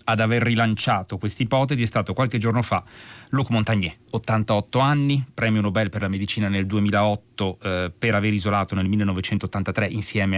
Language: Italian